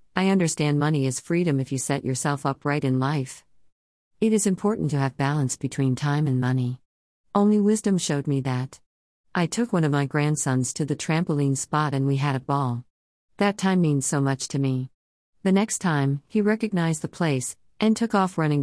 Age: 40-59